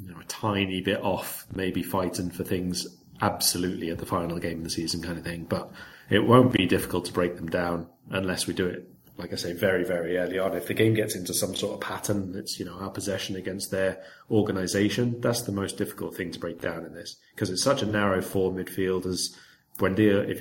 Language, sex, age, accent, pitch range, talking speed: English, male, 30-49, British, 90-105 Hz, 220 wpm